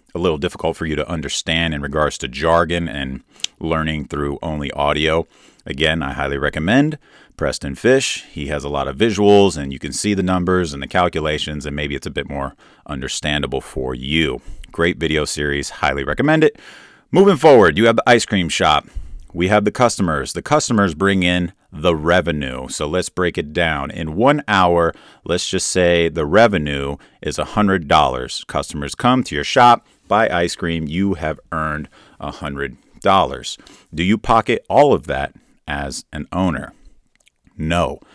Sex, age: male, 30-49